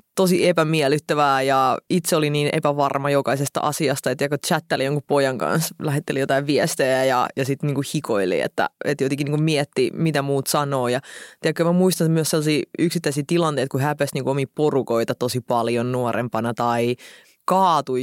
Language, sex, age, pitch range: Finnish, female, 20-39, 135-170 Hz